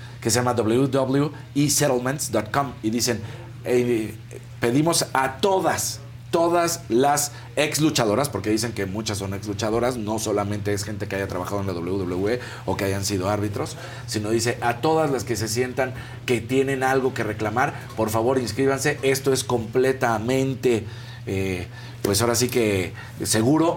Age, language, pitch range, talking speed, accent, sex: 40-59, Spanish, 110-135 Hz, 155 wpm, Mexican, male